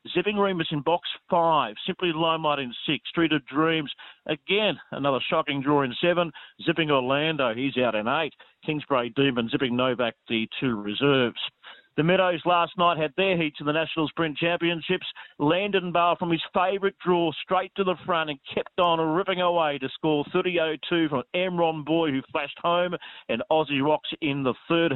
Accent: Australian